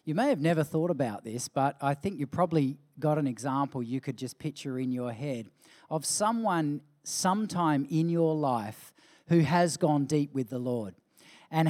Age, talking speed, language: 40-59, 185 wpm, English